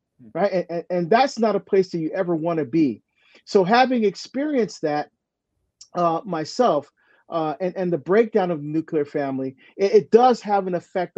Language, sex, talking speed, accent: English, male, 185 wpm, American